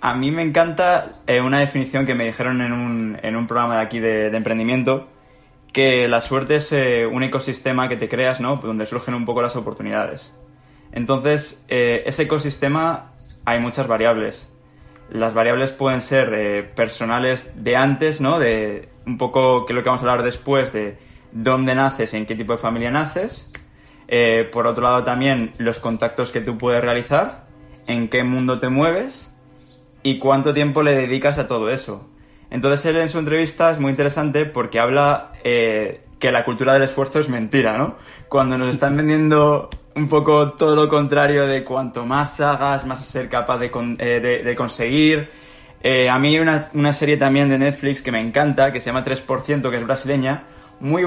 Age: 20-39